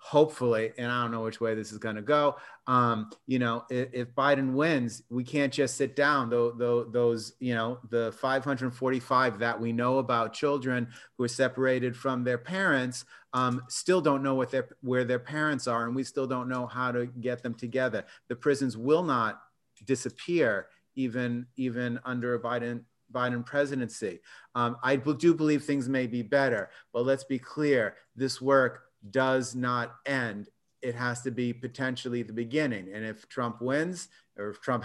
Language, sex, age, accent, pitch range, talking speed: English, male, 30-49, American, 120-135 Hz, 180 wpm